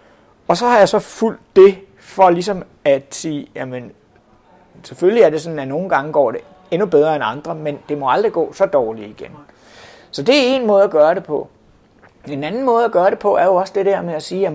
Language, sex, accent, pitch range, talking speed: Danish, male, native, 145-200 Hz, 240 wpm